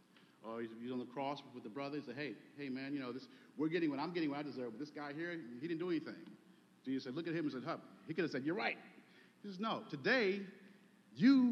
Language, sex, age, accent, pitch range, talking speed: English, male, 50-69, American, 130-185 Hz, 270 wpm